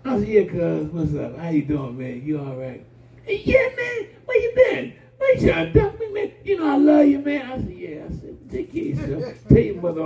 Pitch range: 120-160 Hz